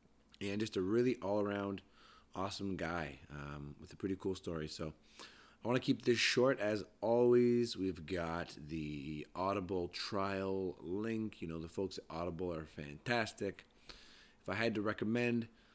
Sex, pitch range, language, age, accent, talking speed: male, 85-105 Hz, English, 30-49, American, 155 wpm